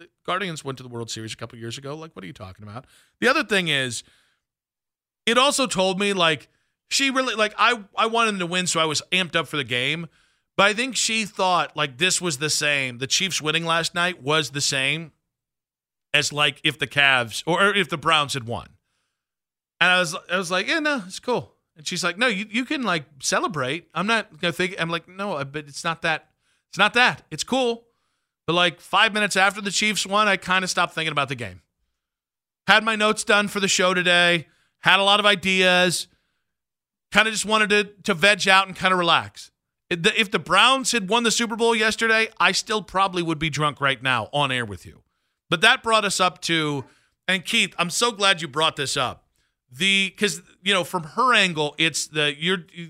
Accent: American